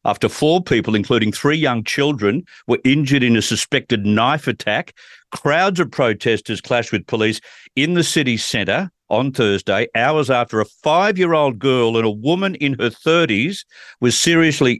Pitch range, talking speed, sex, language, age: 110-150 Hz, 160 wpm, male, English, 50-69